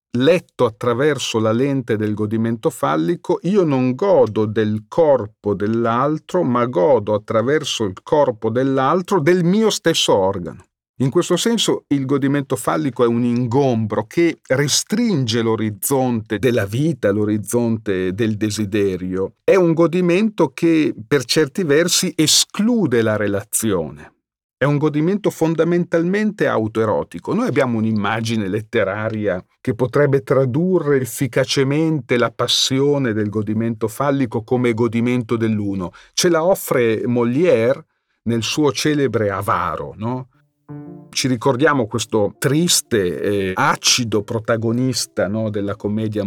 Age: 40-59